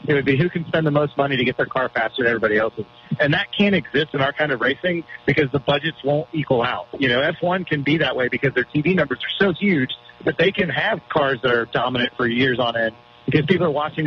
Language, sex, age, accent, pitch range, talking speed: English, male, 40-59, American, 130-165 Hz, 265 wpm